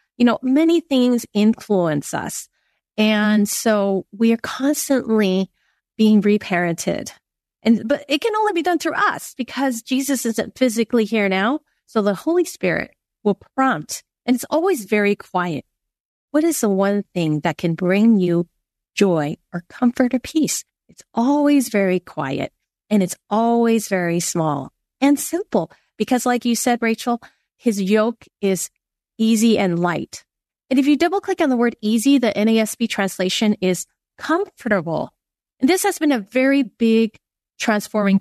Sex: female